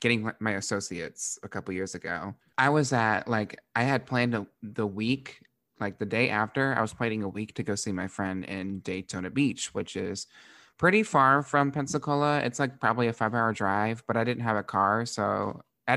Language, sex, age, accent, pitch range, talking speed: English, male, 20-39, American, 100-125 Hz, 205 wpm